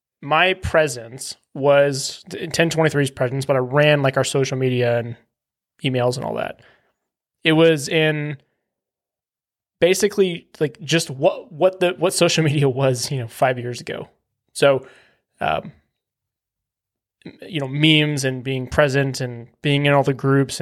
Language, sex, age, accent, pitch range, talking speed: English, male, 20-39, American, 130-155 Hz, 145 wpm